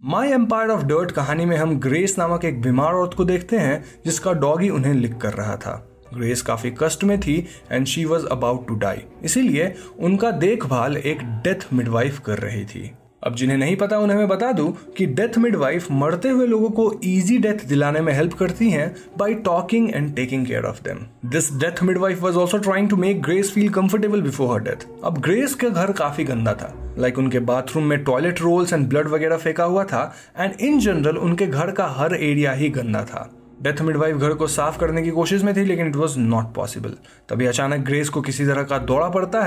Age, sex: 20-39, male